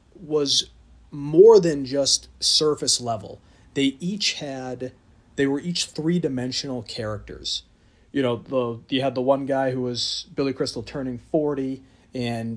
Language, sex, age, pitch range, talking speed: English, male, 30-49, 120-145 Hz, 145 wpm